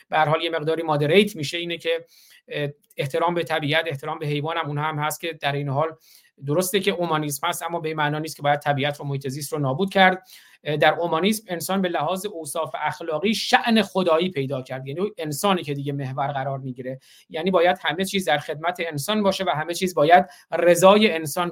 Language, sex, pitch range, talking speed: Persian, male, 150-185 Hz, 195 wpm